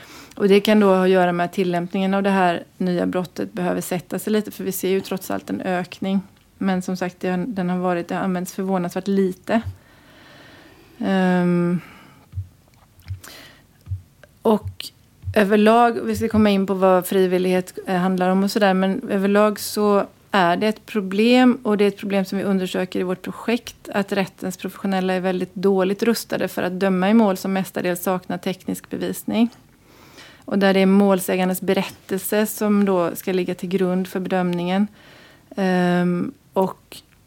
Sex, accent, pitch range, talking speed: female, native, 180-200 Hz, 155 wpm